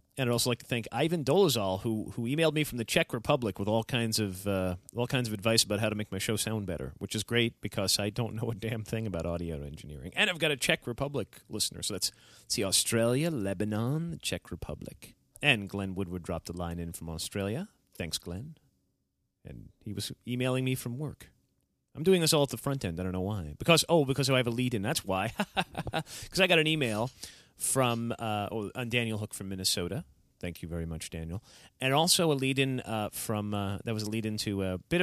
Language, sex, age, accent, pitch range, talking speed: English, male, 30-49, American, 100-145 Hz, 225 wpm